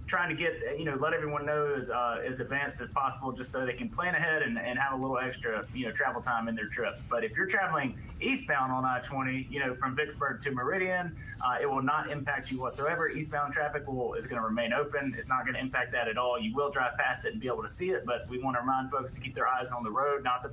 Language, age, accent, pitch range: English, 30-49, American, 125-150 Hz